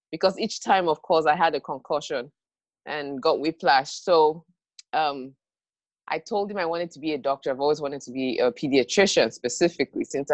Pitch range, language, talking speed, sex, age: 145-195 Hz, English, 185 wpm, female, 20-39